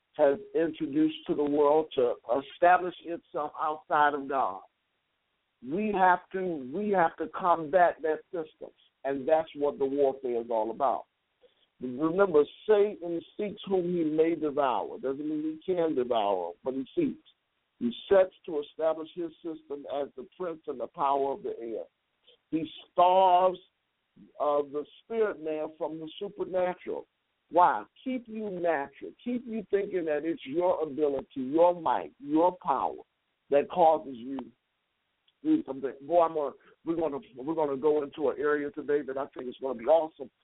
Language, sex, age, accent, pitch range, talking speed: English, male, 50-69, American, 145-205 Hz, 165 wpm